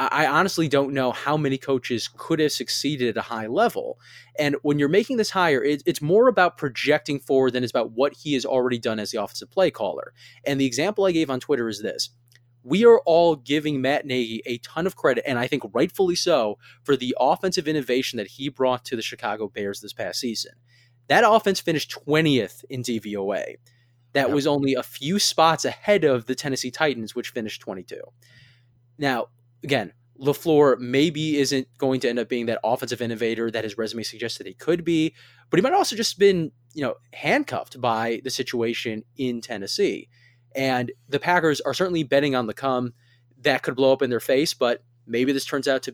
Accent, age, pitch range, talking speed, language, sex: American, 20-39, 120-150 Hz, 200 wpm, English, male